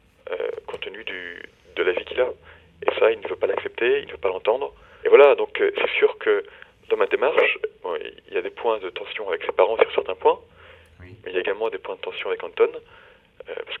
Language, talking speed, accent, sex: French, 250 wpm, French, male